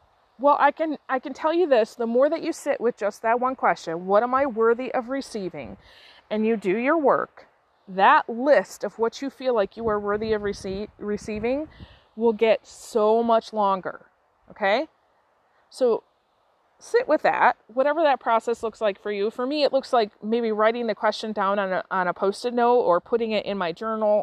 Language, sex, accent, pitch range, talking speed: English, female, American, 200-260 Hz, 200 wpm